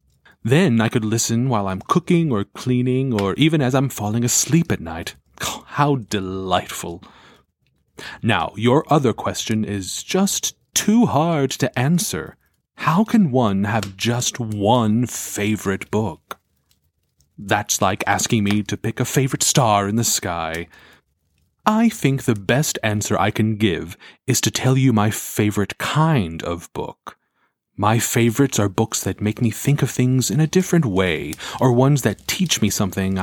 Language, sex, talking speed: English, male, 155 wpm